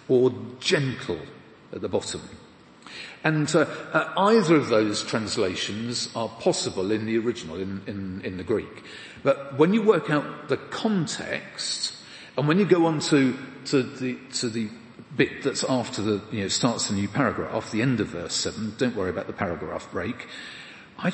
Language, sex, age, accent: English, male, 40-59, British